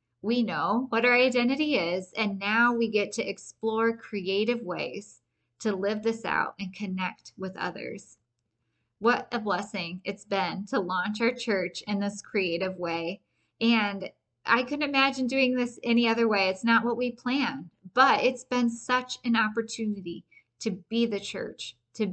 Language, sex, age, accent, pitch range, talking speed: English, female, 20-39, American, 190-235 Hz, 165 wpm